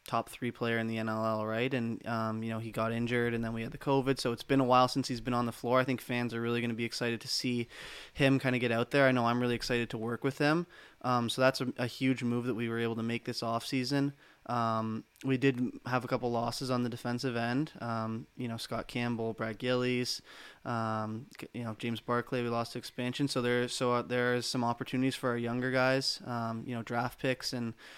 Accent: American